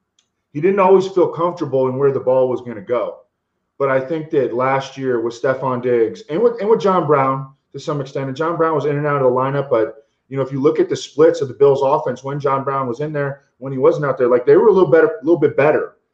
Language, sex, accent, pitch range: English, male, American, 125-160 Hz